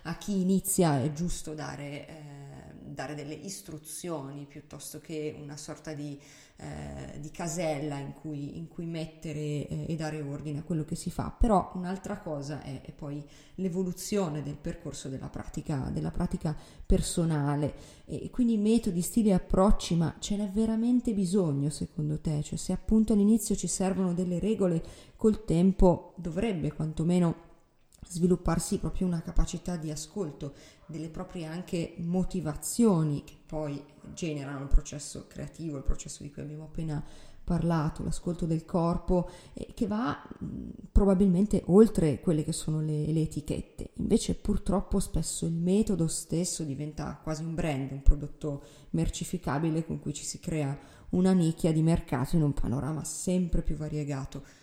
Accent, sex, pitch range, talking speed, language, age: native, female, 150-180 Hz, 150 wpm, Italian, 30-49